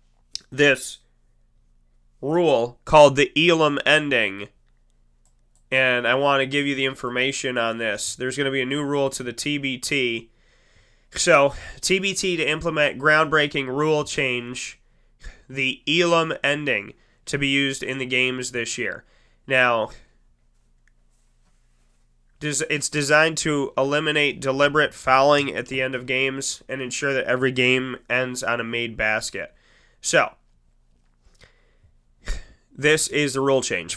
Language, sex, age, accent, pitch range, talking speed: English, male, 20-39, American, 120-150 Hz, 125 wpm